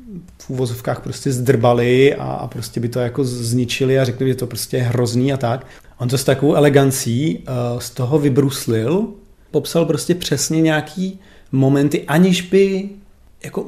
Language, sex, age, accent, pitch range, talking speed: Czech, male, 40-59, native, 115-140 Hz, 155 wpm